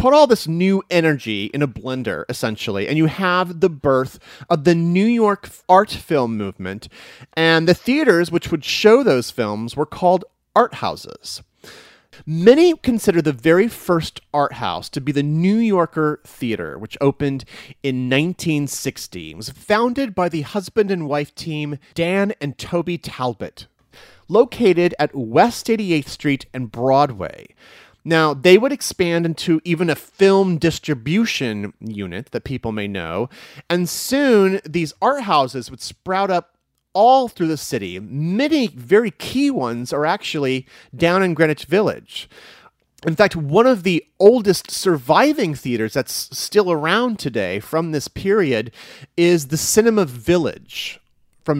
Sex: male